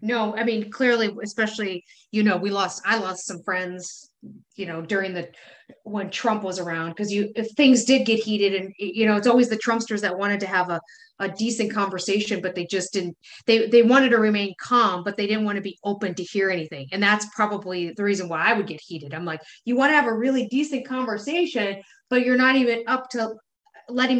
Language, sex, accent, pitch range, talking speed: English, female, American, 195-245 Hz, 225 wpm